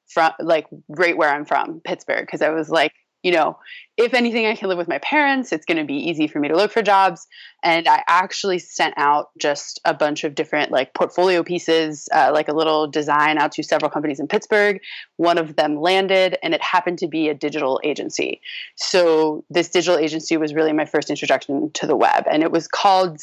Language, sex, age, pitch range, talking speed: English, female, 20-39, 150-185 Hz, 215 wpm